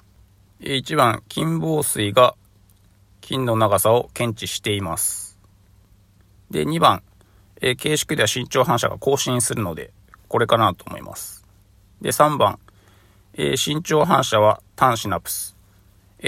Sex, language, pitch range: male, Japanese, 95-115 Hz